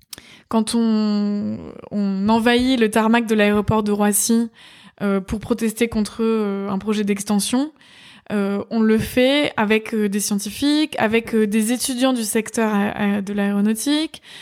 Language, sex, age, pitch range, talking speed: French, female, 20-39, 210-250 Hz, 140 wpm